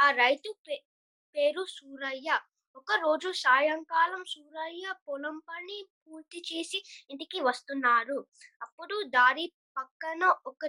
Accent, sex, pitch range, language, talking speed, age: native, female, 270-345 Hz, Telugu, 90 wpm, 20-39